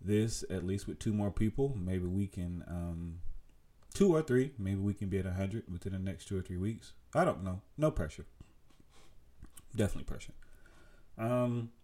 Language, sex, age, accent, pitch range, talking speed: English, male, 30-49, American, 90-115 Hz, 180 wpm